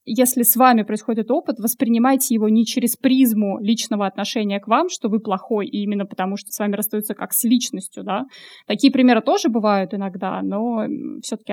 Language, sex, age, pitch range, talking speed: Russian, female, 20-39, 210-255 Hz, 175 wpm